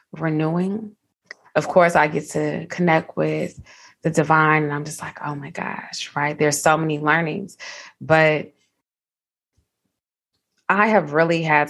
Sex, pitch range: female, 150-175 Hz